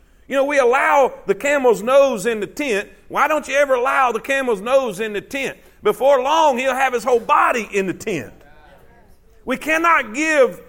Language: English